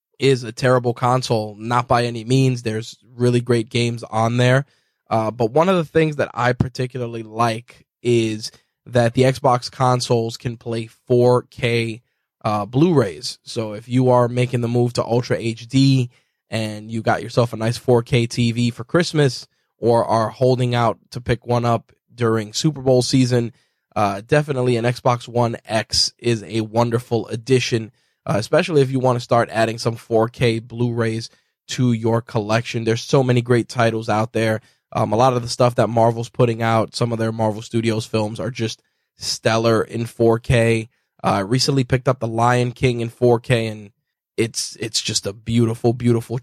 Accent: American